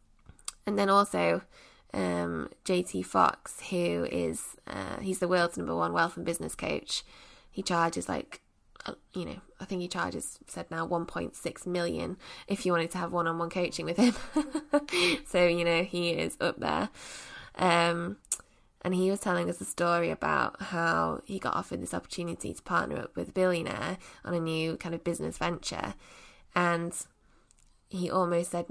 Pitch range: 165-180 Hz